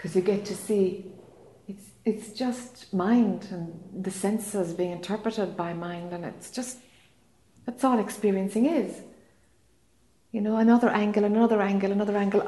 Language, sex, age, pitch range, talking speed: English, female, 60-79, 190-230 Hz, 150 wpm